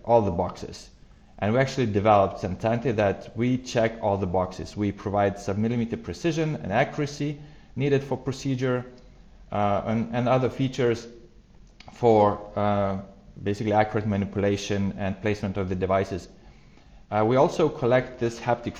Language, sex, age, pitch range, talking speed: English, male, 30-49, 105-125 Hz, 145 wpm